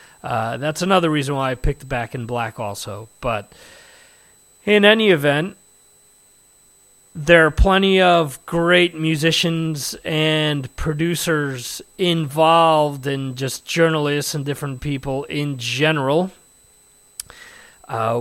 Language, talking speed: English, 110 wpm